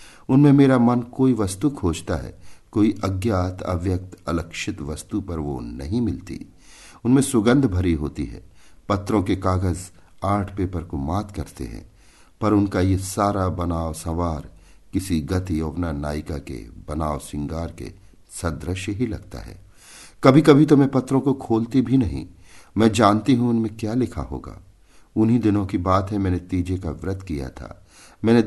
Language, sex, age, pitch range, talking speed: Hindi, male, 50-69, 85-115 Hz, 160 wpm